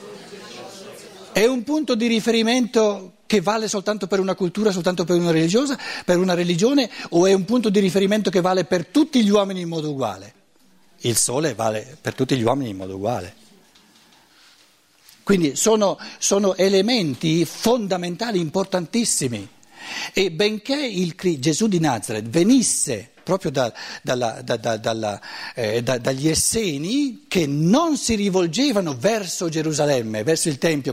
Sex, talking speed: male, 130 wpm